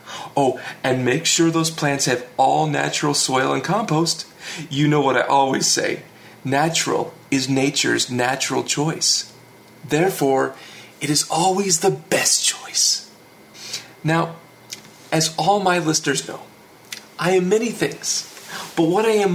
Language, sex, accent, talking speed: English, male, American, 135 wpm